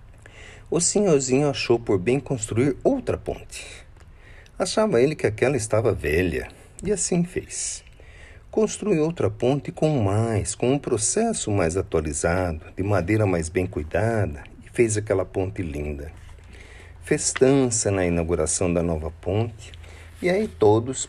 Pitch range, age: 90-125 Hz, 50-69